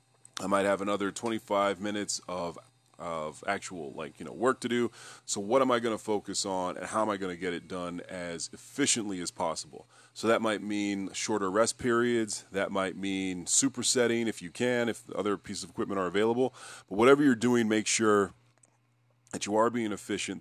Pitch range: 95-115 Hz